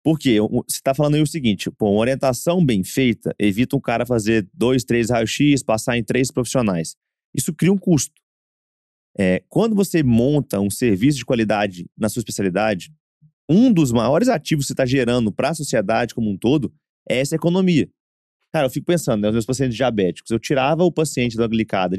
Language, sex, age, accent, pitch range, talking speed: Portuguese, male, 30-49, Brazilian, 115-165 Hz, 195 wpm